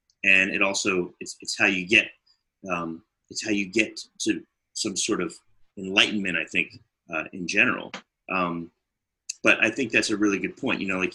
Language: English